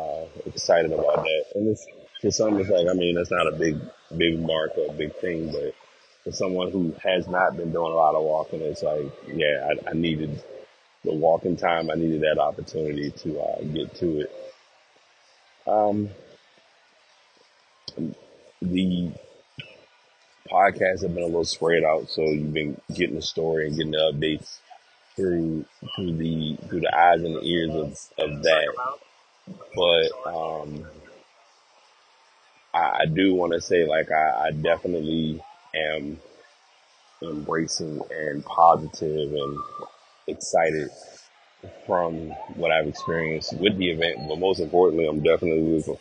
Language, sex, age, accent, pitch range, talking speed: English, male, 30-49, American, 80-90 Hz, 145 wpm